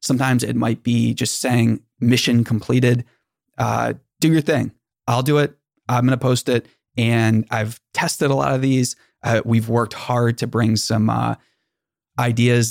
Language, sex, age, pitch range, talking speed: English, male, 30-49, 110-125 Hz, 170 wpm